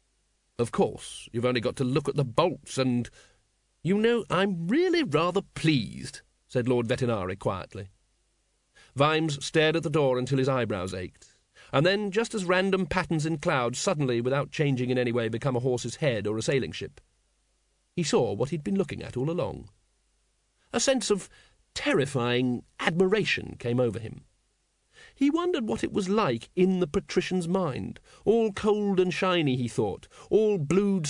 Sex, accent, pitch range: male, British, 125-185 Hz